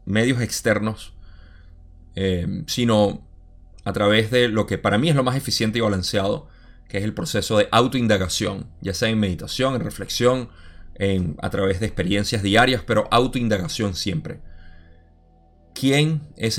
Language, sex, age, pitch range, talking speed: Spanish, male, 30-49, 95-115 Hz, 140 wpm